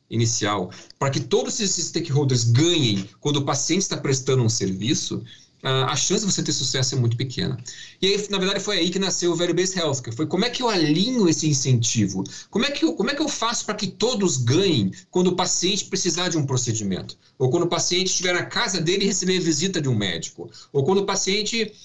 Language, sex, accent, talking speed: Portuguese, male, Brazilian, 220 wpm